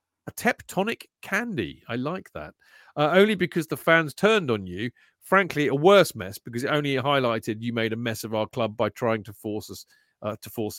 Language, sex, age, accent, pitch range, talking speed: English, male, 40-59, British, 115-175 Hz, 205 wpm